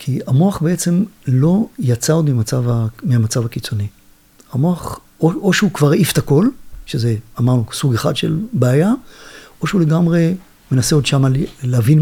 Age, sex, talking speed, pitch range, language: 50-69, male, 140 wpm, 120-175 Hz, Hebrew